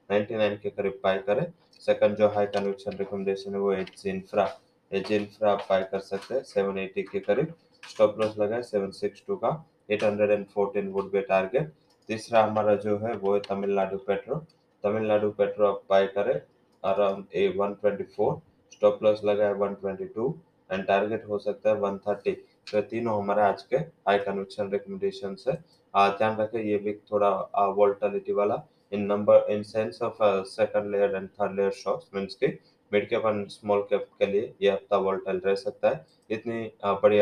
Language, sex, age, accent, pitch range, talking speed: English, male, 20-39, Indian, 100-105 Hz, 130 wpm